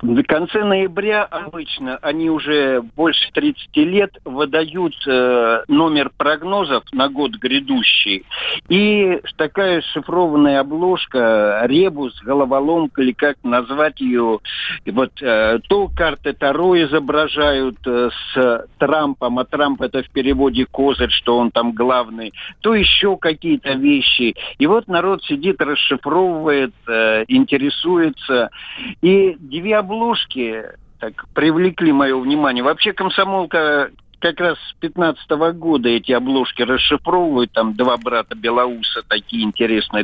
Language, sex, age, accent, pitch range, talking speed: Russian, male, 60-79, native, 125-190 Hz, 115 wpm